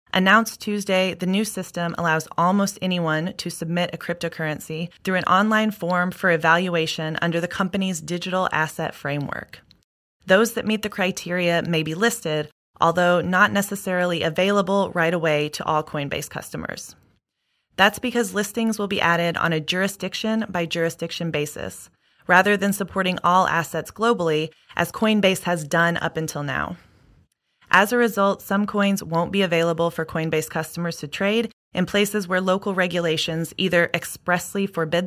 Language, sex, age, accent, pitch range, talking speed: English, female, 20-39, American, 160-195 Hz, 145 wpm